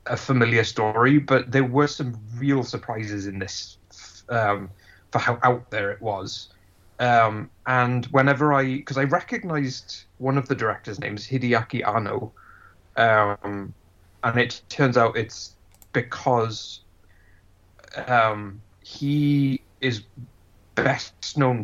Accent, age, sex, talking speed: British, 30-49, male, 120 wpm